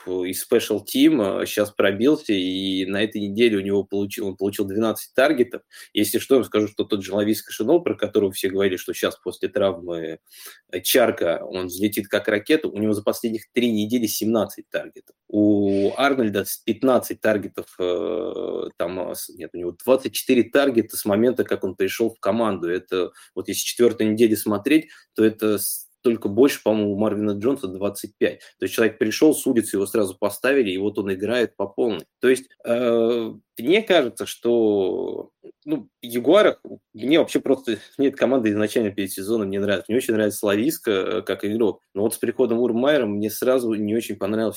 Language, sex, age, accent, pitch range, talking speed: Russian, male, 20-39, native, 100-125 Hz, 170 wpm